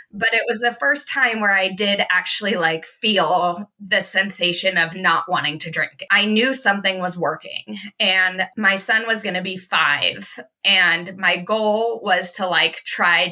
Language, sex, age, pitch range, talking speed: English, female, 20-39, 180-215 Hz, 175 wpm